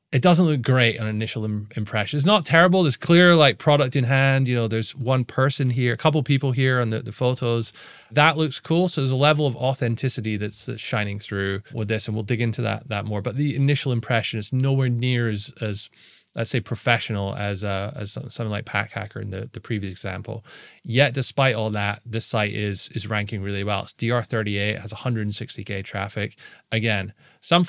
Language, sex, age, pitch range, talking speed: English, male, 20-39, 105-135 Hz, 205 wpm